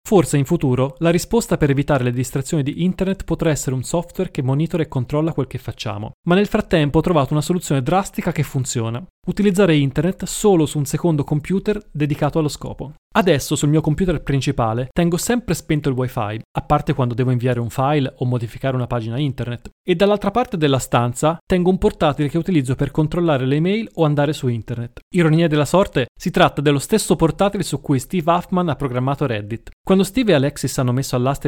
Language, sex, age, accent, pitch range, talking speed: Italian, male, 20-39, native, 130-175 Hz, 200 wpm